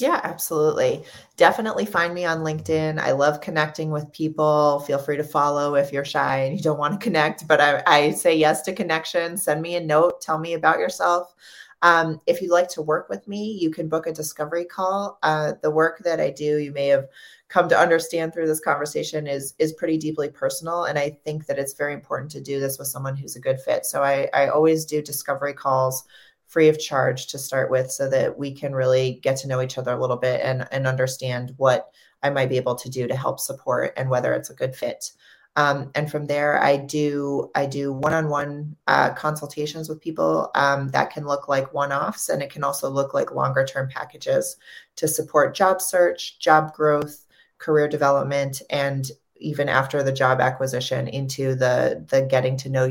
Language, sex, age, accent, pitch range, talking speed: English, female, 30-49, American, 135-160 Hz, 210 wpm